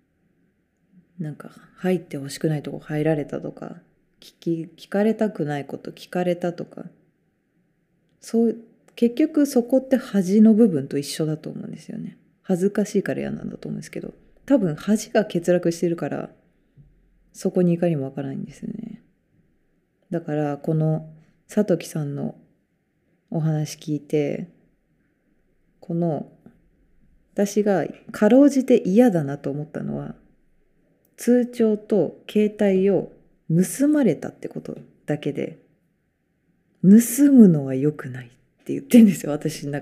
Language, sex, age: Japanese, female, 20-39